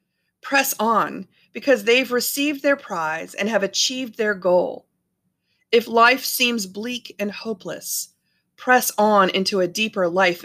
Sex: female